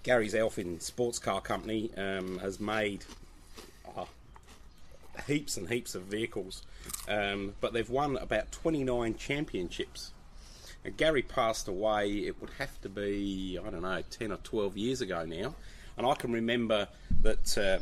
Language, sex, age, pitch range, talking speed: English, male, 30-49, 95-110 Hz, 150 wpm